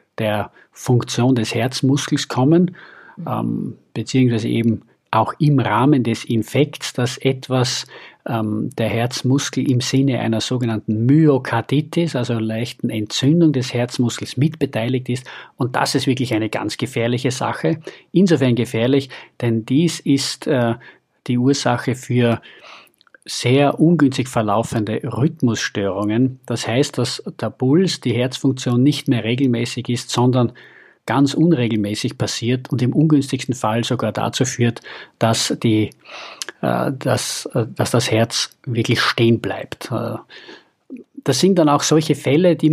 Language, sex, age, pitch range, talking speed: German, male, 50-69, 115-140 Hz, 125 wpm